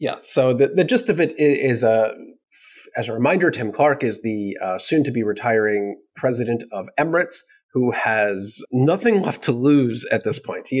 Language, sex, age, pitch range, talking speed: English, male, 30-49, 105-150 Hz, 190 wpm